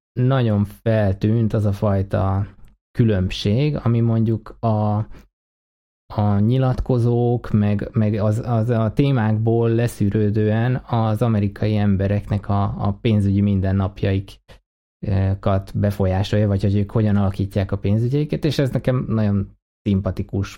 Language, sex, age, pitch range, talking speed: Hungarian, male, 20-39, 100-115 Hz, 110 wpm